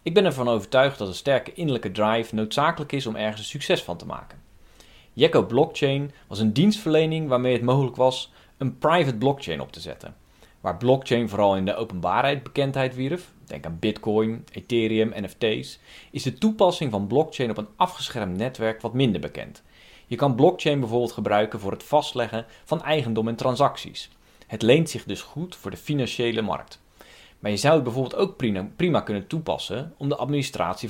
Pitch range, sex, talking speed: 110-145 Hz, male, 175 wpm